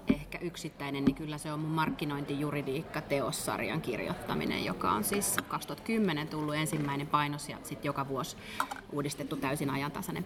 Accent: native